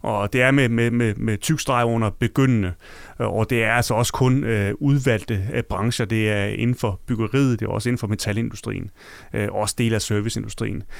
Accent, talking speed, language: native, 190 wpm, Danish